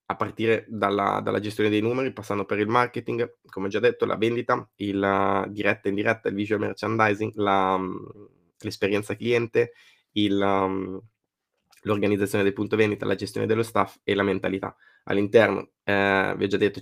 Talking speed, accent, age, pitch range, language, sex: 165 wpm, native, 20-39, 100-110 Hz, Italian, male